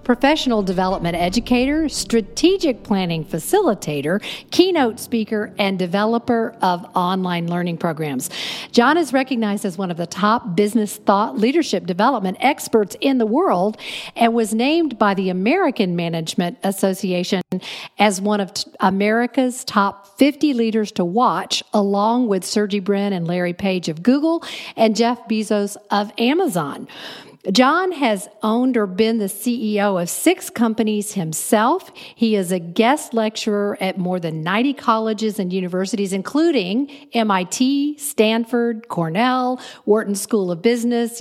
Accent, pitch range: American, 195-245 Hz